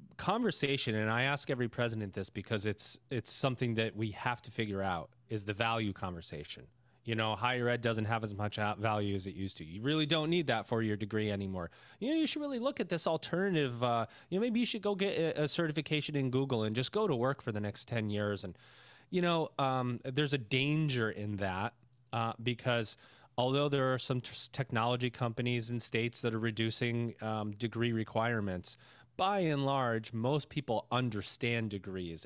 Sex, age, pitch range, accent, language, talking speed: male, 30-49, 110-135 Hz, American, English, 200 wpm